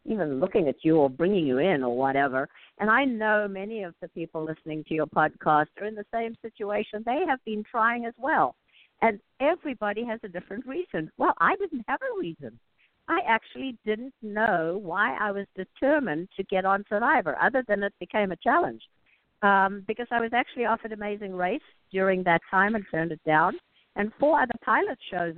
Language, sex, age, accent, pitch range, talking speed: English, female, 60-79, American, 165-225 Hz, 195 wpm